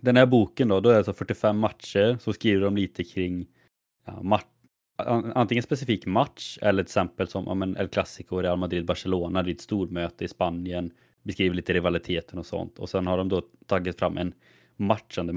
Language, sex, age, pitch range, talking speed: Swedish, male, 30-49, 90-110 Hz, 205 wpm